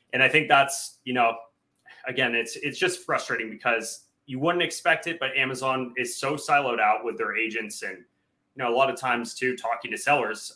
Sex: male